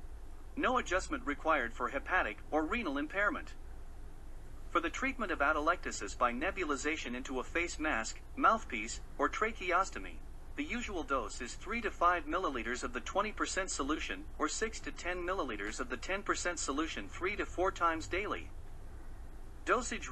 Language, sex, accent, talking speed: English, male, American, 130 wpm